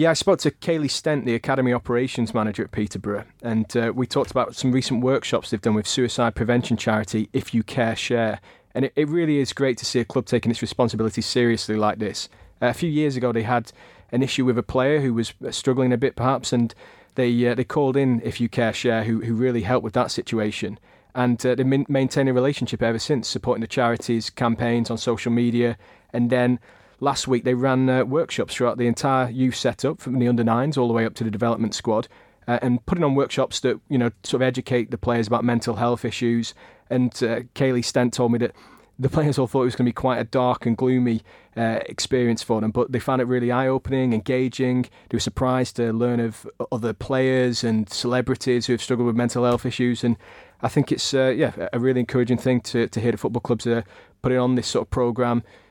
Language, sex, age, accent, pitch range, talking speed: English, male, 30-49, British, 115-130 Hz, 225 wpm